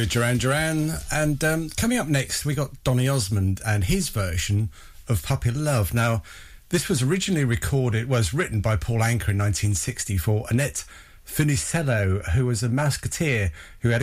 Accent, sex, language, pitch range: British, male, English, 105-140 Hz